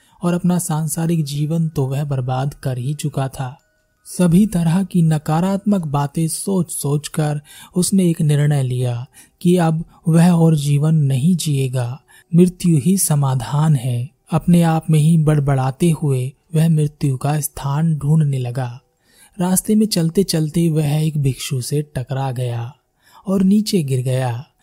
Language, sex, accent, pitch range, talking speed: Hindi, male, native, 135-170 Hz, 145 wpm